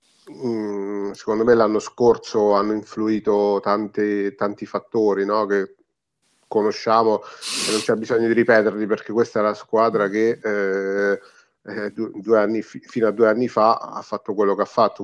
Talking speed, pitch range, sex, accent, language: 150 wpm, 100-115 Hz, male, native, Italian